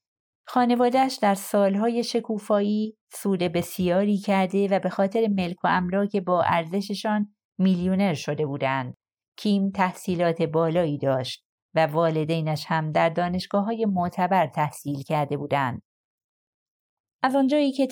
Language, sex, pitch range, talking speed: Persian, female, 165-200 Hz, 115 wpm